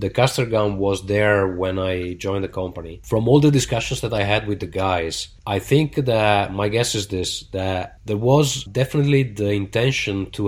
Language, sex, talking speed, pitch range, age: English, male, 195 wpm, 95-110 Hz, 20-39